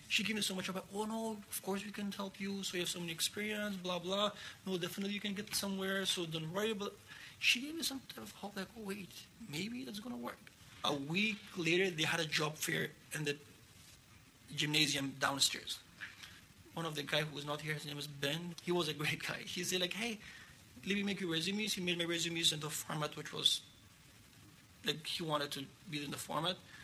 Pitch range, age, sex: 150-190 Hz, 30-49, male